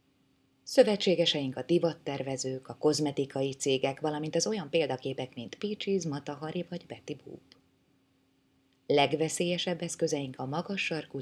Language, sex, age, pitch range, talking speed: Hungarian, female, 20-39, 130-165 Hz, 110 wpm